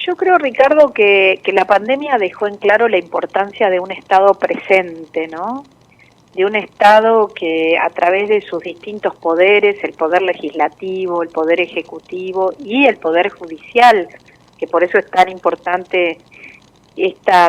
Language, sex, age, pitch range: Spanish, female, 40-59, 170-210 Hz